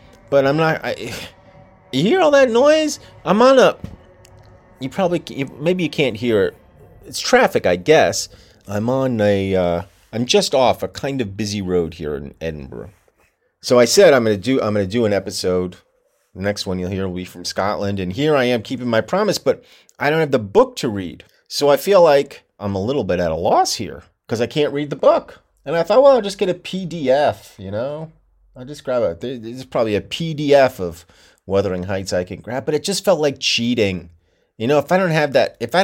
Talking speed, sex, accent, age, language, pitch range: 220 wpm, male, American, 30-49, English, 95-145 Hz